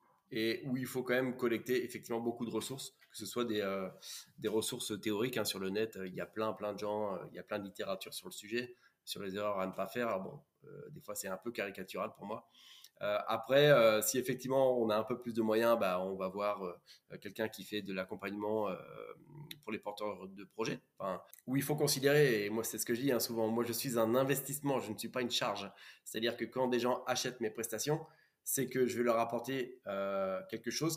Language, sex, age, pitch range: French, male, 20-39, 110-135 Hz